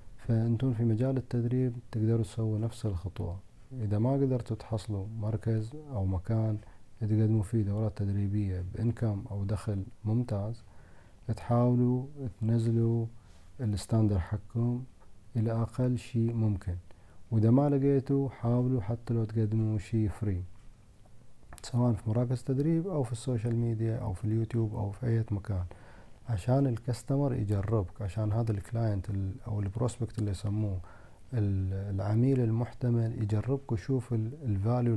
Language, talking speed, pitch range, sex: Arabic, 120 wpm, 100-120 Hz, male